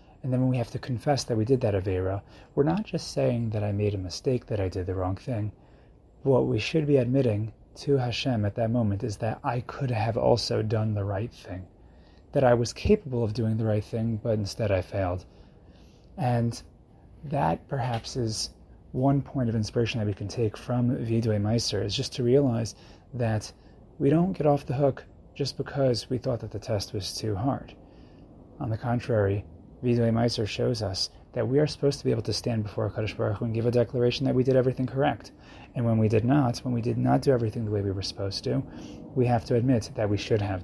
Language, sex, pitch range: English, male, 105-130 Hz